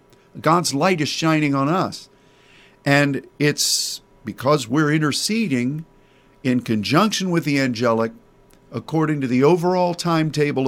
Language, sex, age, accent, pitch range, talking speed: English, male, 50-69, American, 135-180 Hz, 120 wpm